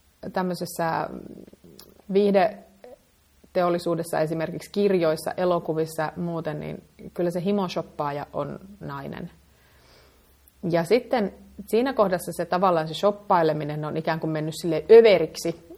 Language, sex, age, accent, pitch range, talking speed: Finnish, female, 30-49, native, 160-195 Hz, 100 wpm